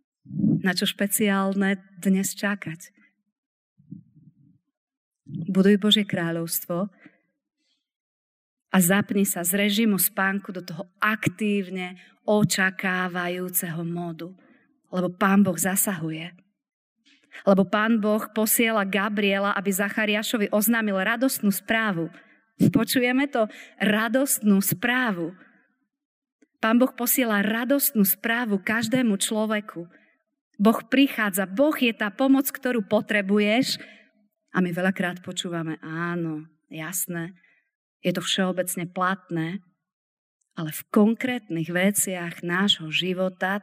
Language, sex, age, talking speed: Slovak, female, 40-59, 95 wpm